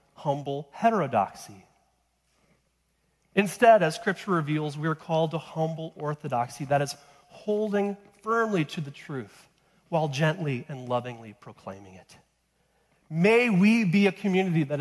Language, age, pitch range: English, 30-49, 140-180 Hz